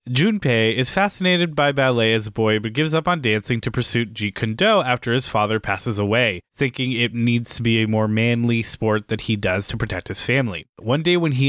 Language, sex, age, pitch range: English, male, 20-39, 110-135 Hz